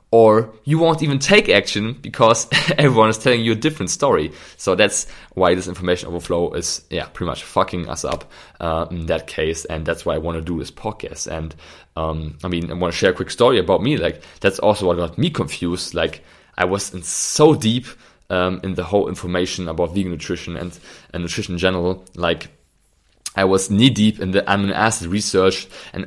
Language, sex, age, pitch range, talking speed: English, male, 20-39, 85-105 Hz, 205 wpm